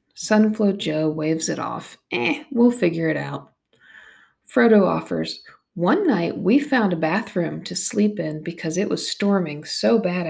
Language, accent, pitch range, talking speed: English, American, 165-215 Hz, 155 wpm